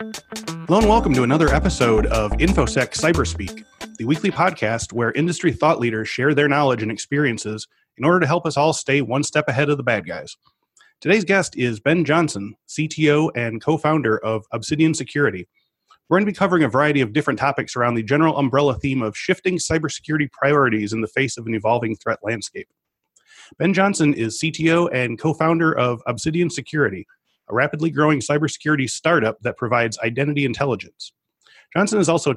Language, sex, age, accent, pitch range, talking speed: English, male, 30-49, American, 120-160 Hz, 180 wpm